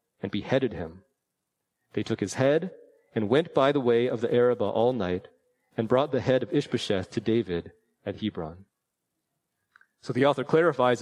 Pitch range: 130-165 Hz